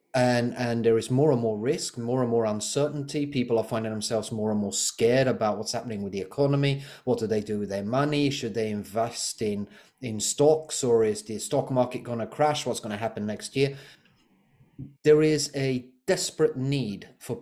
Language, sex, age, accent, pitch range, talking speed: English, male, 30-49, British, 110-140 Hz, 205 wpm